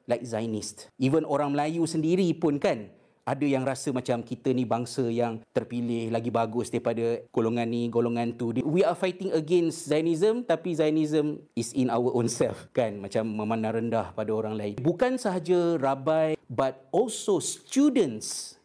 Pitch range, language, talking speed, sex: 120-165 Hz, Malay, 160 wpm, male